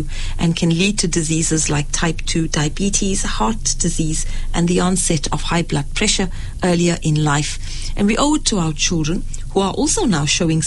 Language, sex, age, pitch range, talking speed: English, female, 40-59, 155-185 Hz, 185 wpm